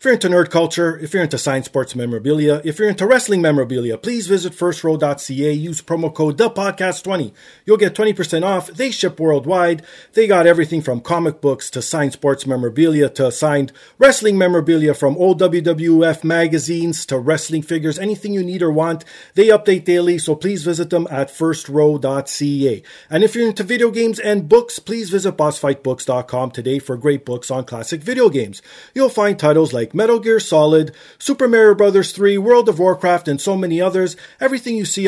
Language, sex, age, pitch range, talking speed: English, male, 30-49, 140-195 Hz, 180 wpm